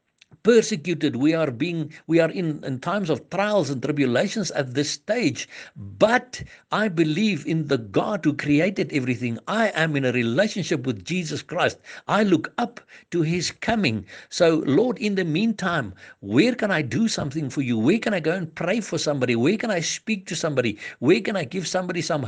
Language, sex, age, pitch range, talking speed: English, male, 60-79, 125-170 Hz, 190 wpm